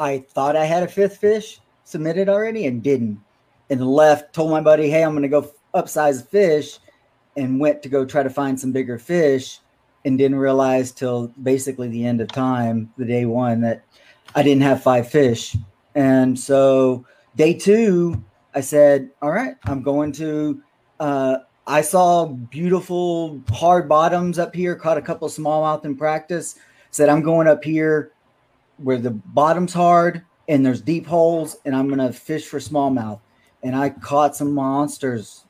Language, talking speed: English, 170 wpm